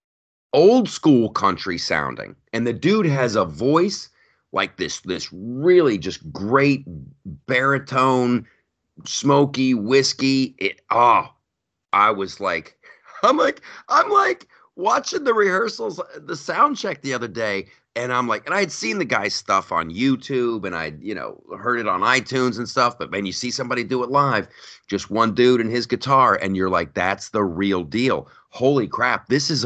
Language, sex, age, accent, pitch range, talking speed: English, male, 40-59, American, 105-140 Hz, 170 wpm